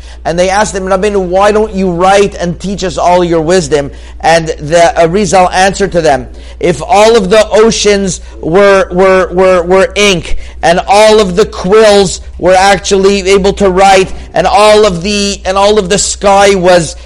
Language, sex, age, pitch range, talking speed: English, male, 50-69, 180-210 Hz, 180 wpm